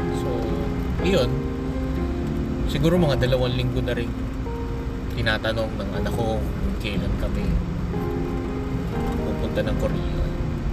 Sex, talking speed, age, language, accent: male, 100 wpm, 20-39, Filipino, native